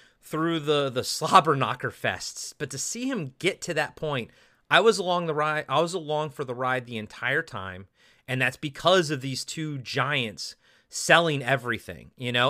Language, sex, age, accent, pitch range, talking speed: English, male, 30-49, American, 125-165 Hz, 185 wpm